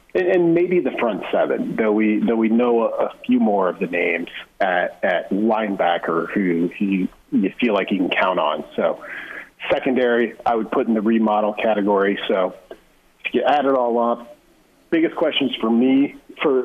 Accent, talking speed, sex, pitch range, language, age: American, 175 wpm, male, 105-135 Hz, English, 40-59